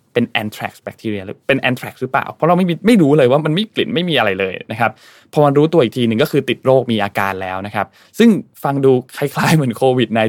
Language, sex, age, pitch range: Thai, male, 20-39, 105-140 Hz